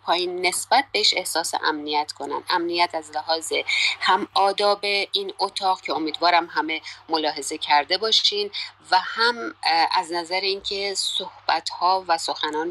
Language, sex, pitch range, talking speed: Persian, female, 150-185 Hz, 130 wpm